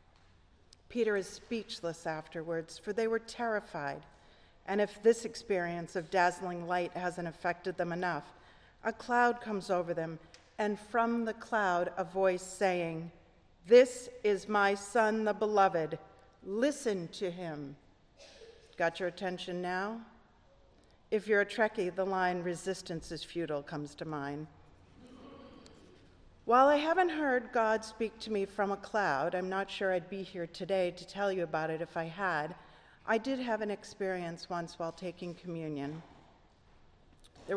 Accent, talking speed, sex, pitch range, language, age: American, 145 wpm, female, 165-215 Hz, English, 50-69